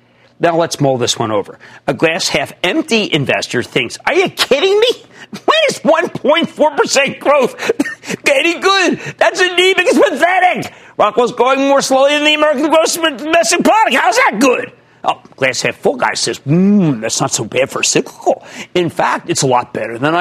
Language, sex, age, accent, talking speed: English, male, 50-69, American, 180 wpm